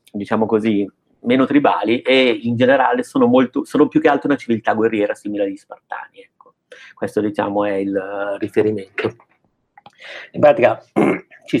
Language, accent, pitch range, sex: Italian, native, 100-115 Hz, male